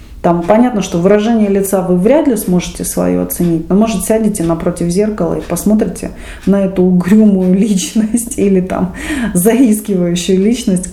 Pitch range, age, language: 170-215 Hz, 30-49, Russian